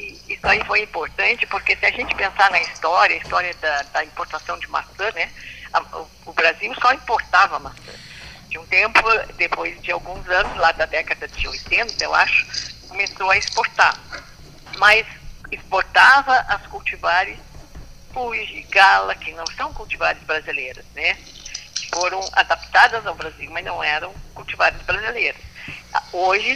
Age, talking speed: 50-69, 145 wpm